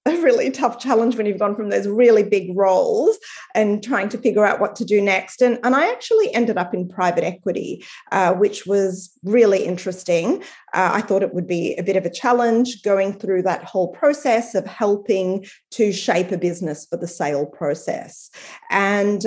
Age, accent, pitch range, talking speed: 30-49, Australian, 170-210 Hz, 195 wpm